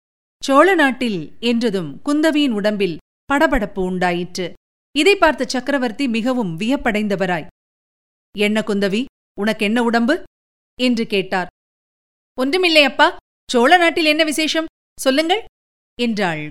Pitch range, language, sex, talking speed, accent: 205-280 Hz, Tamil, female, 90 wpm, native